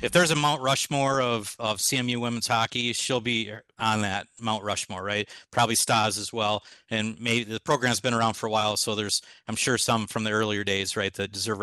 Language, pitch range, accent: English, 110-120 Hz, American